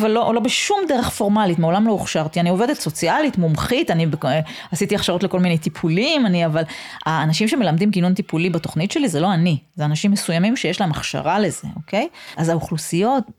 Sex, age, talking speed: female, 30-49, 185 wpm